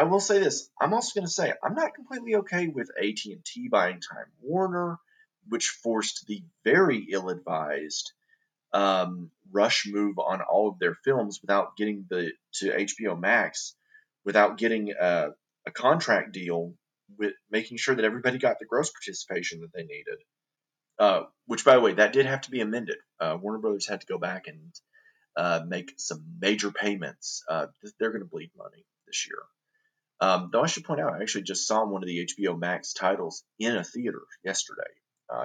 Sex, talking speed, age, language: male, 185 wpm, 30-49, English